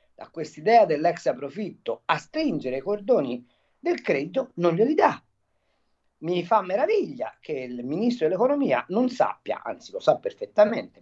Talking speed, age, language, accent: 135 wpm, 50-69, Italian, native